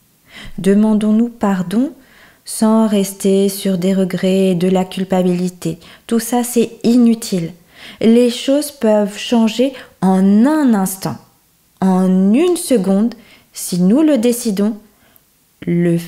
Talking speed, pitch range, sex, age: 110 wpm, 160-210 Hz, female, 20-39